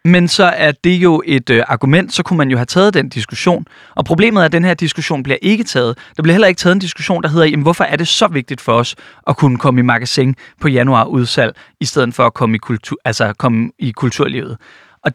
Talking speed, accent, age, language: 245 wpm, native, 30-49, Danish